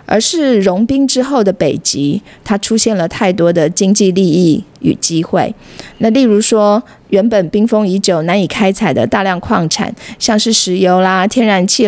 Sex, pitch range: female, 175-220 Hz